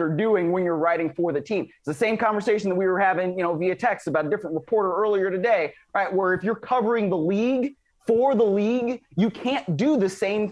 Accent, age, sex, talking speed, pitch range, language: American, 20-39, male, 235 wpm, 160-215 Hz, English